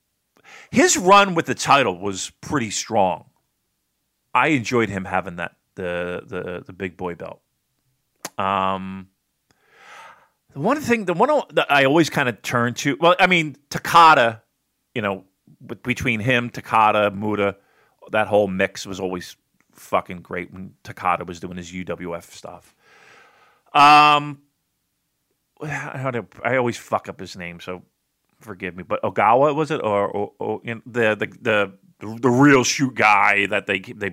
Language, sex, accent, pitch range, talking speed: English, male, American, 95-130 Hz, 155 wpm